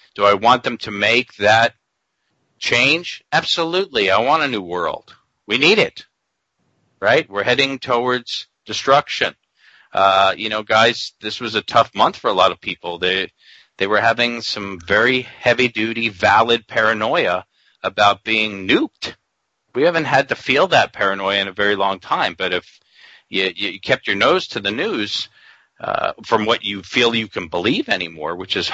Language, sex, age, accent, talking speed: English, male, 40-59, American, 170 wpm